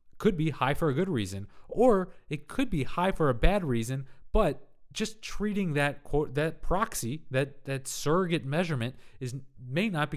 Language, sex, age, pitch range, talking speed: English, male, 30-49, 105-145 Hz, 185 wpm